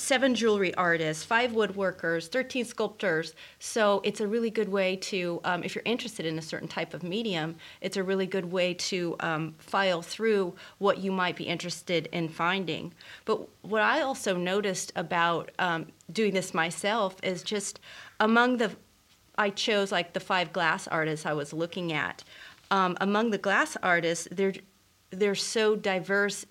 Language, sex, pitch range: English, female, 170-205 Hz